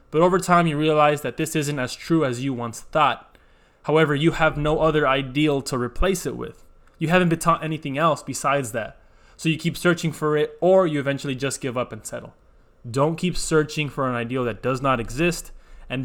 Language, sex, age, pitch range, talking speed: English, male, 20-39, 125-150 Hz, 215 wpm